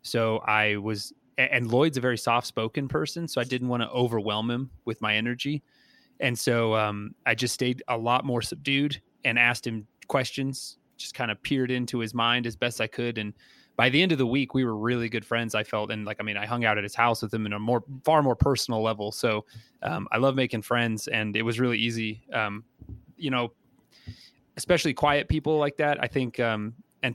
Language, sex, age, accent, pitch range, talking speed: English, male, 30-49, American, 110-130 Hz, 220 wpm